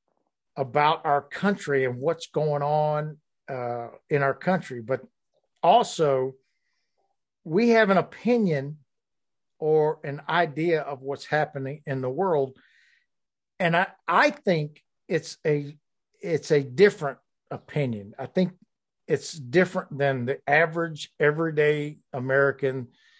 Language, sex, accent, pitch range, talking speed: English, male, American, 130-160 Hz, 115 wpm